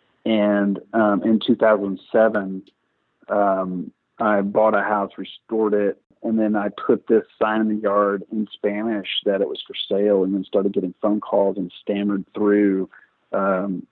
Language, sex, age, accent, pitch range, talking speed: English, male, 40-59, American, 100-115 Hz, 160 wpm